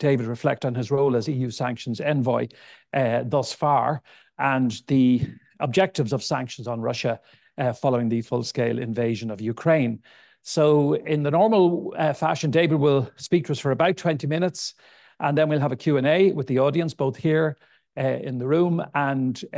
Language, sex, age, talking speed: English, male, 60-79, 175 wpm